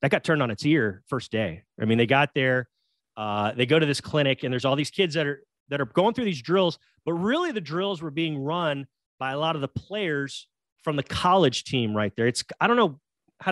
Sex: male